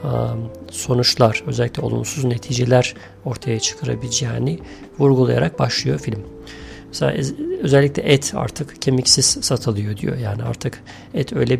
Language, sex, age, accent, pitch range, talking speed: Turkish, male, 40-59, native, 110-135 Hz, 105 wpm